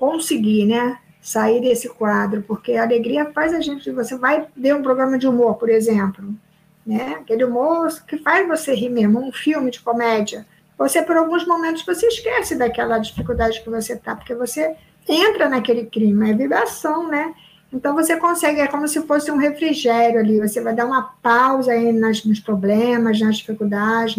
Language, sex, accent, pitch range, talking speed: Portuguese, female, Brazilian, 220-315 Hz, 170 wpm